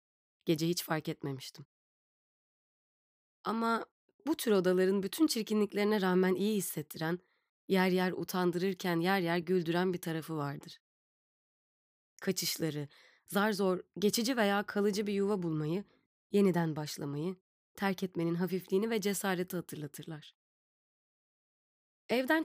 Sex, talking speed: female, 105 wpm